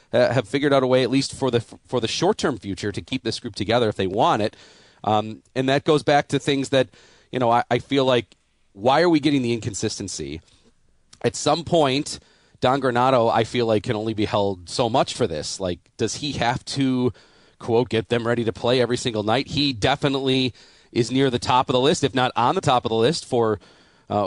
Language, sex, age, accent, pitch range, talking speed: English, male, 30-49, American, 110-135 Hz, 225 wpm